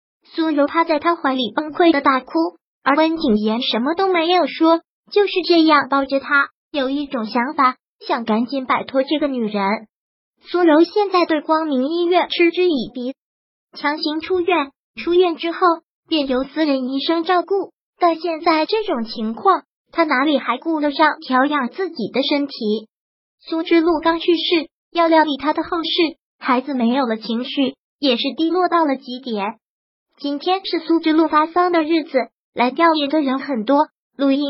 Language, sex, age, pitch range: Chinese, male, 20-39, 270-330 Hz